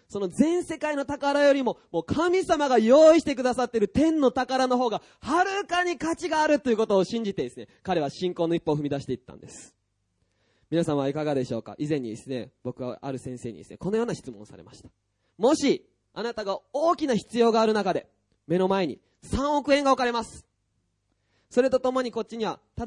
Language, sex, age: Japanese, male, 20-39